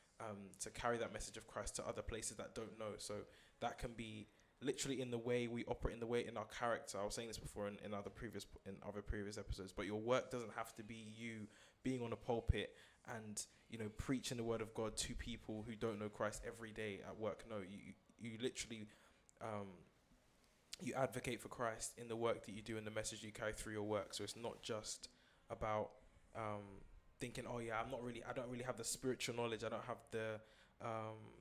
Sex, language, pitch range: male, English, 105-120 Hz